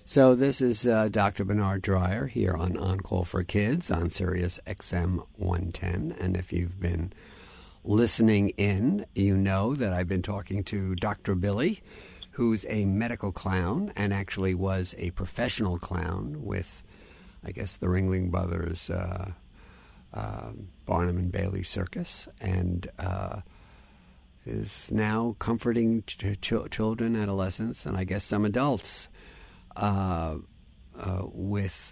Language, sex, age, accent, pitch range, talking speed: English, male, 50-69, American, 90-110 Hz, 130 wpm